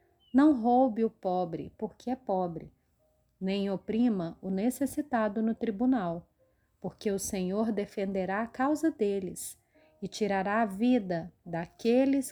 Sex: female